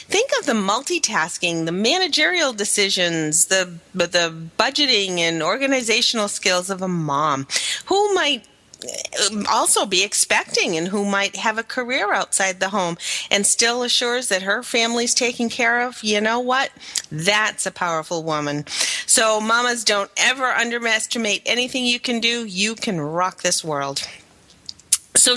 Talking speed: 145 wpm